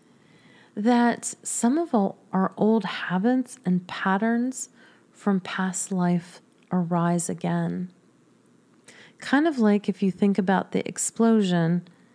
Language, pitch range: English, 180-215 Hz